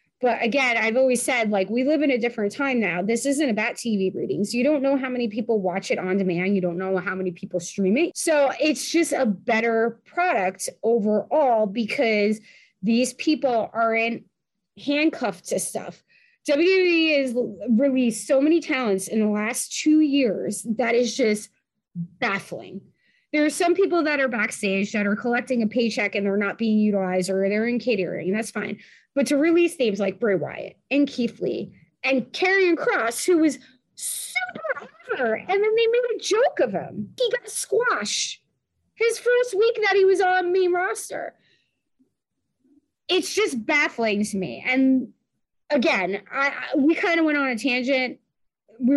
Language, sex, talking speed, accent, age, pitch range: English, female, 175 wpm, American, 20-39, 215-300 Hz